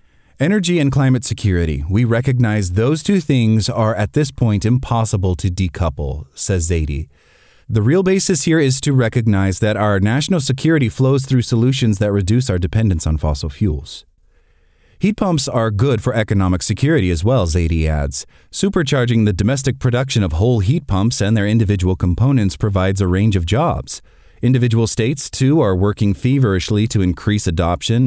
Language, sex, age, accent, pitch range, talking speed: English, male, 30-49, American, 95-130 Hz, 160 wpm